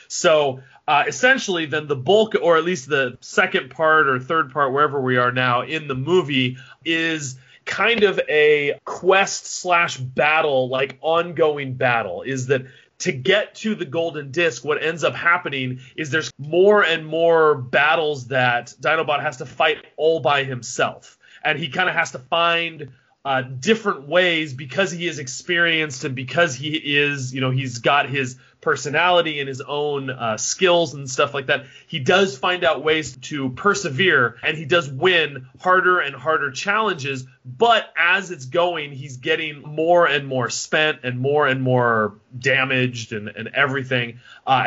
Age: 30-49